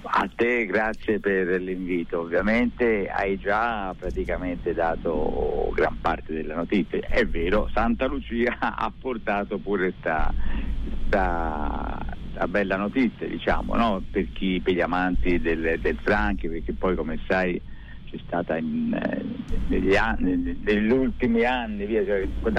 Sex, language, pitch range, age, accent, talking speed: male, Italian, 95-130 Hz, 50-69, native, 120 wpm